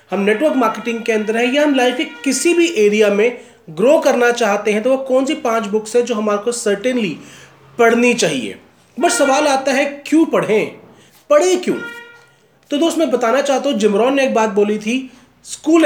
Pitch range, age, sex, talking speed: 200-255 Hz, 30-49, male, 195 wpm